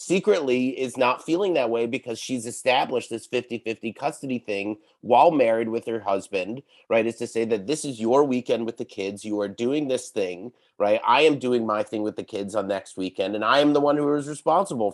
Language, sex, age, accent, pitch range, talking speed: English, male, 30-49, American, 115-145 Hz, 220 wpm